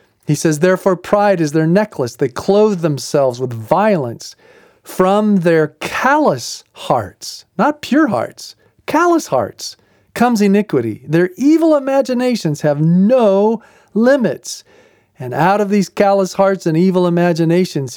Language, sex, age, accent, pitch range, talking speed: English, male, 40-59, American, 145-210 Hz, 125 wpm